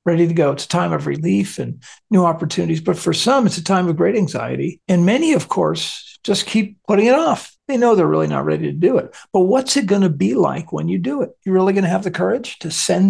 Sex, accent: male, American